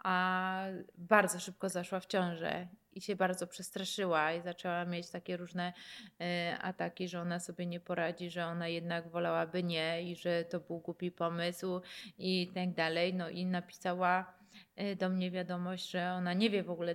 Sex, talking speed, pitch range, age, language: female, 165 wpm, 175-200 Hz, 30-49, Polish